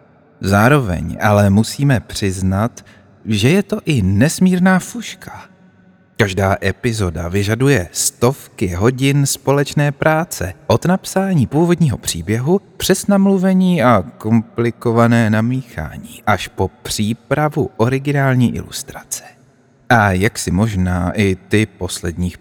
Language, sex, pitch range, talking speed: Czech, male, 105-150 Hz, 100 wpm